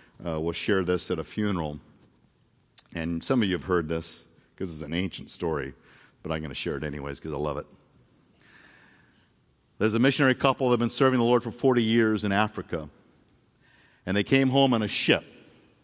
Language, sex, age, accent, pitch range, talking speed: English, male, 50-69, American, 90-125 Hz, 195 wpm